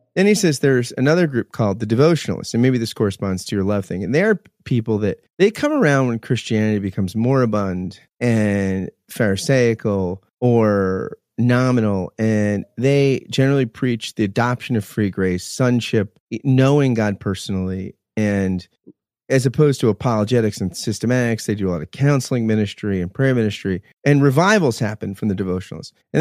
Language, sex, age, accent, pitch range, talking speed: English, male, 30-49, American, 100-130 Hz, 160 wpm